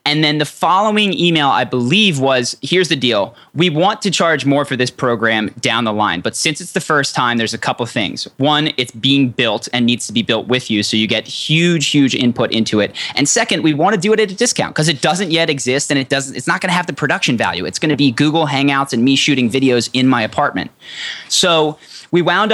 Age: 20-39